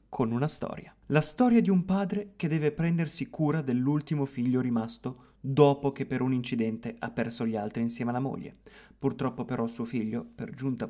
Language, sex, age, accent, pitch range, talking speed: Italian, male, 30-49, native, 120-190 Hz, 180 wpm